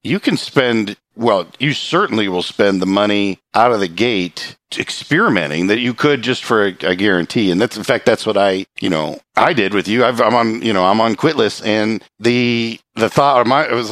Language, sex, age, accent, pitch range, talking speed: English, male, 50-69, American, 95-120 Hz, 225 wpm